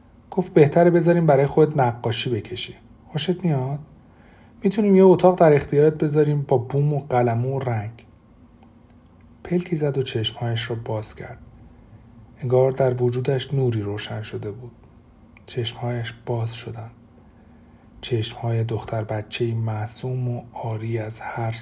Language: Persian